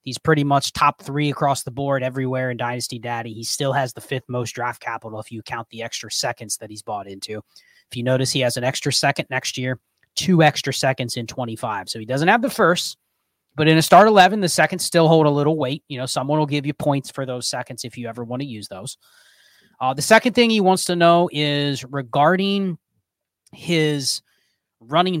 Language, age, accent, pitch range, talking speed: English, 30-49, American, 125-155 Hz, 220 wpm